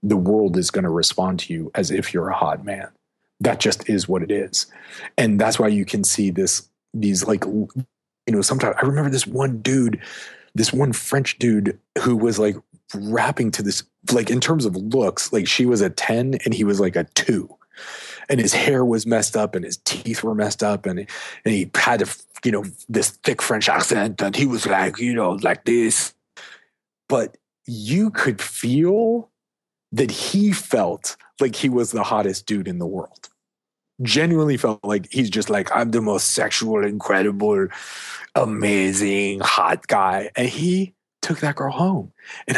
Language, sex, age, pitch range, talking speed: English, male, 30-49, 105-135 Hz, 185 wpm